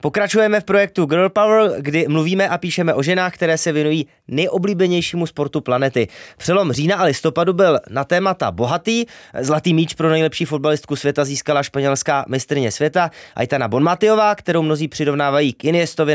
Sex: male